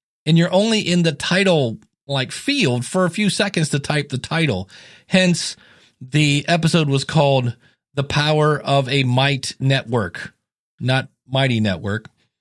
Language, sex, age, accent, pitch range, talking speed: English, male, 40-59, American, 130-170 Hz, 140 wpm